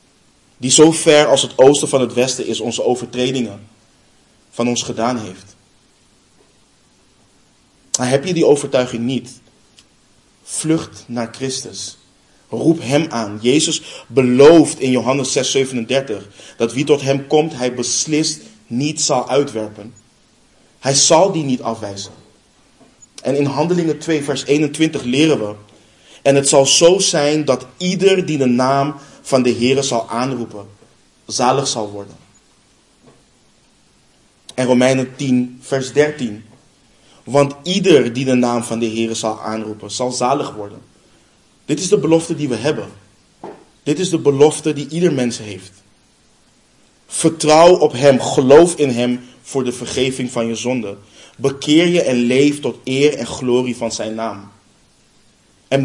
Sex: male